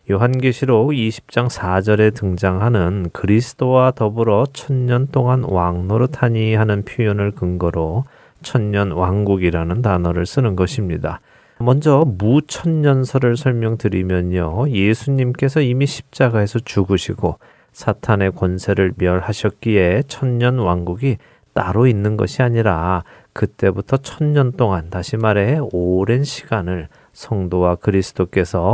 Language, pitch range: Korean, 95-125 Hz